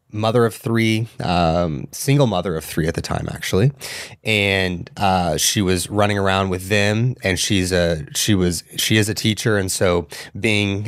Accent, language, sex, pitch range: American, English, male, 90-105 Hz